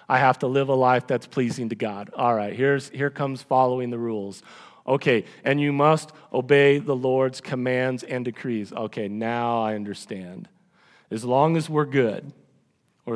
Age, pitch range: 40-59, 120-155 Hz